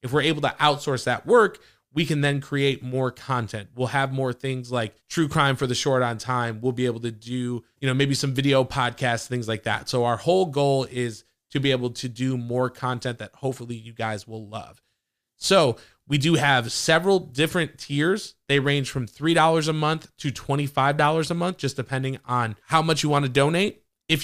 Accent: American